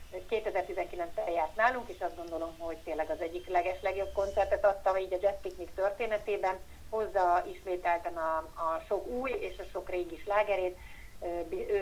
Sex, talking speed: female, 160 wpm